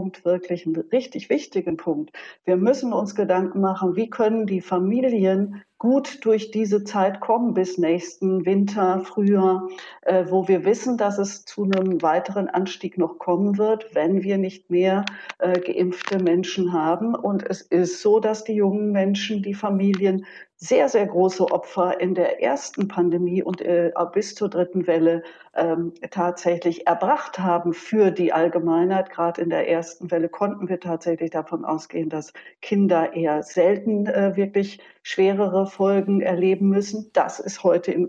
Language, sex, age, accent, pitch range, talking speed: German, female, 50-69, German, 175-205 Hz, 150 wpm